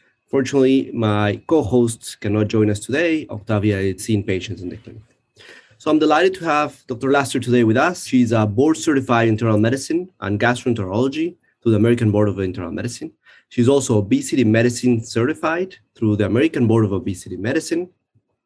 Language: English